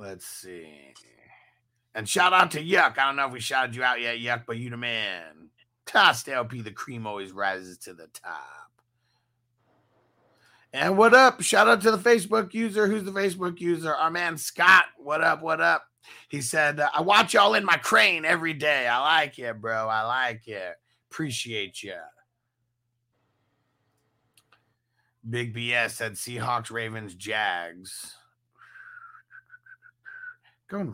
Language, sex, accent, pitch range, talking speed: English, male, American, 115-165 Hz, 145 wpm